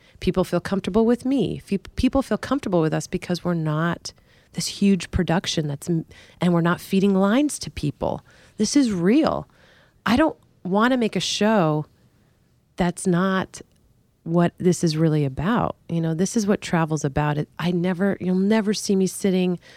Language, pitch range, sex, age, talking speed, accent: English, 155-200 Hz, female, 30-49, 165 wpm, American